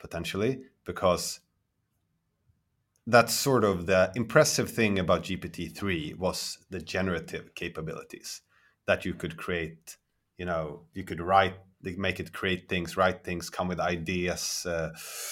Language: English